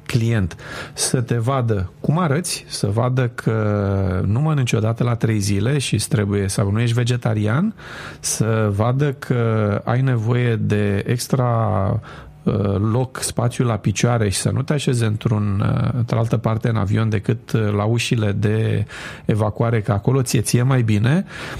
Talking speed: 145 wpm